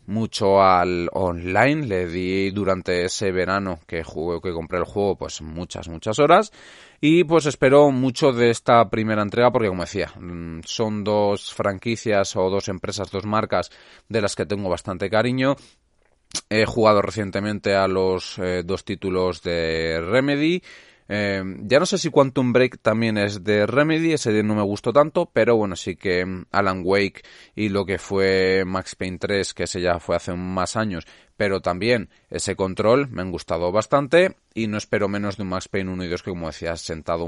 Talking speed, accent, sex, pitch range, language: 180 wpm, Spanish, male, 95-120 Hz, Spanish